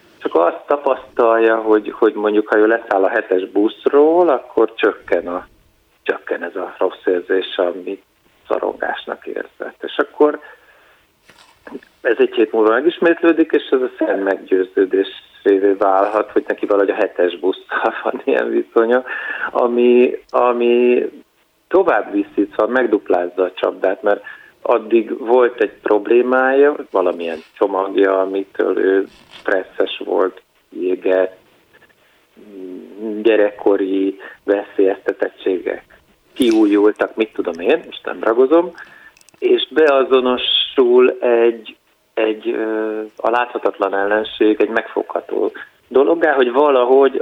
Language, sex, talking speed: Hungarian, male, 105 wpm